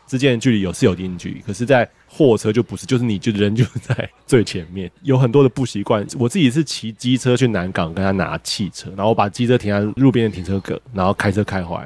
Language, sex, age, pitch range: Chinese, male, 20-39, 100-130 Hz